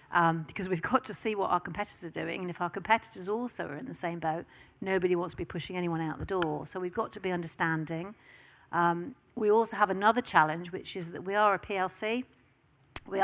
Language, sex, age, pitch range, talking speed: English, female, 40-59, 170-205 Hz, 225 wpm